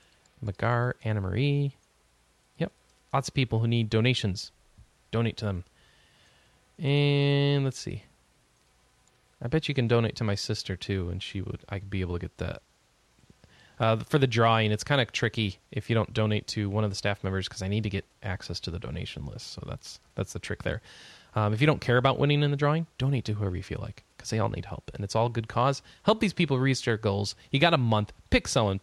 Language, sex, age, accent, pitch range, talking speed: English, male, 30-49, American, 105-150 Hz, 225 wpm